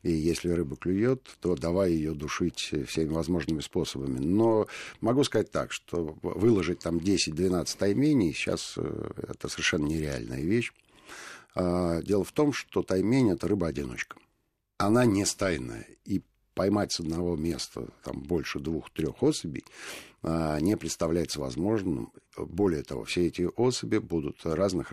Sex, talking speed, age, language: male, 130 wpm, 60-79, Russian